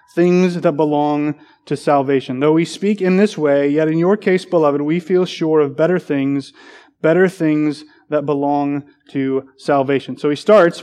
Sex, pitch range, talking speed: male, 145-170 Hz, 170 wpm